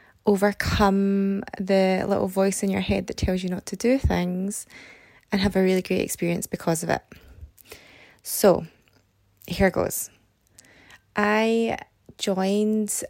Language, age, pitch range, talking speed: English, 20-39, 165-205 Hz, 130 wpm